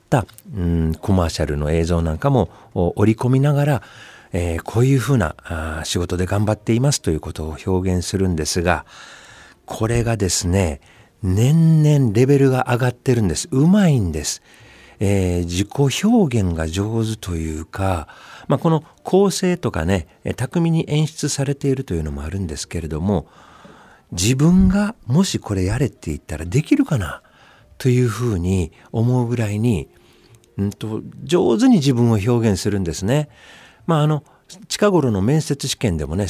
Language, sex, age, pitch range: Japanese, male, 50-69, 90-140 Hz